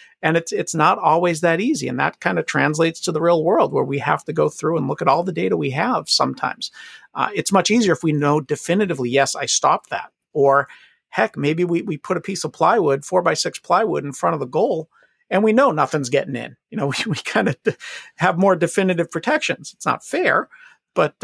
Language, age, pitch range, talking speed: English, 50-69, 130-170 Hz, 230 wpm